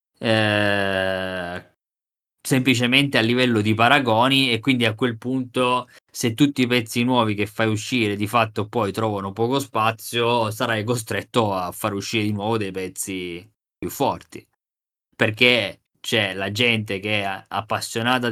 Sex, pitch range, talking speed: male, 105-120 Hz, 140 wpm